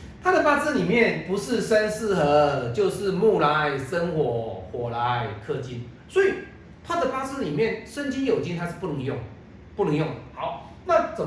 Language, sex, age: Chinese, male, 40-59